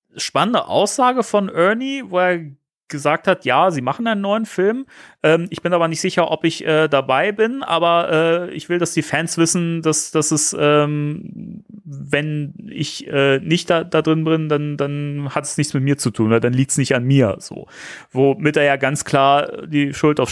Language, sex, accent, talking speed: German, male, German, 205 wpm